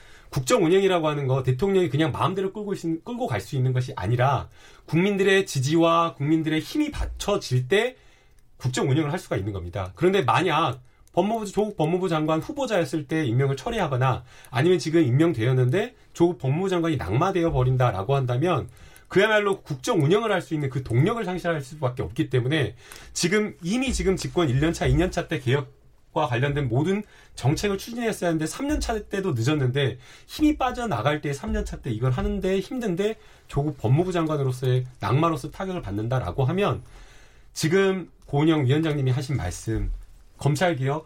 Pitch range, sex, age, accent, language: 130-180 Hz, male, 30-49, native, Korean